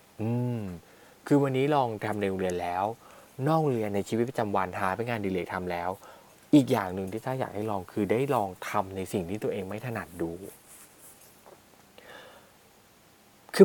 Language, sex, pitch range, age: Thai, male, 100-140 Hz, 20-39